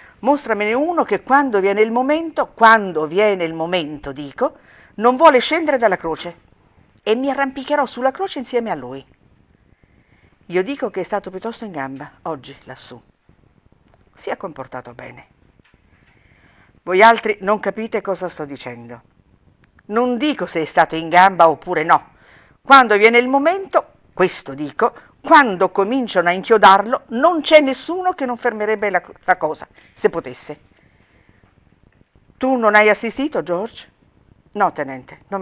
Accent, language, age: native, Italian, 50-69